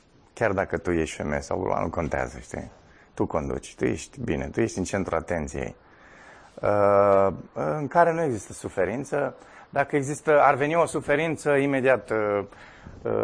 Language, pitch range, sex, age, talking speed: Romanian, 95-135 Hz, male, 20-39, 155 wpm